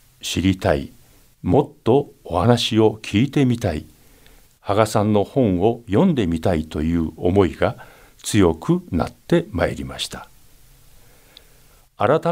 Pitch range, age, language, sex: 85-140 Hz, 60-79, Japanese, male